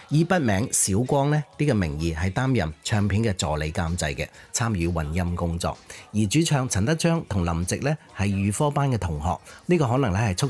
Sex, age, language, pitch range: male, 30-49, Chinese, 90-135 Hz